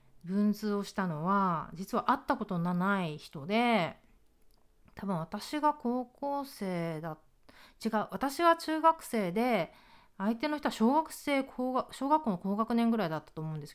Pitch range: 170-235 Hz